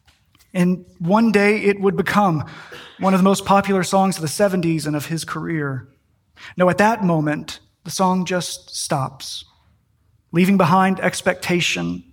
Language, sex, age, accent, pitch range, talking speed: English, male, 30-49, American, 155-195 Hz, 150 wpm